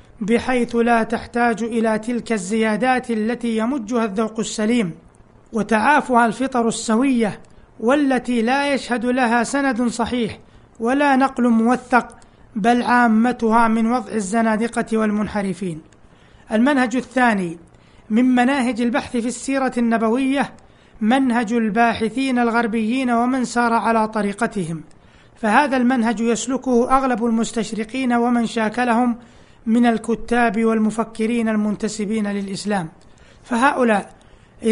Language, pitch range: Arabic, 225-255 Hz